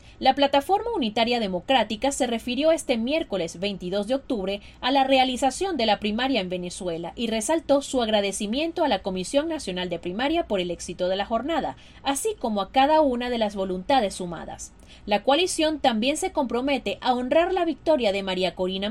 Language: Spanish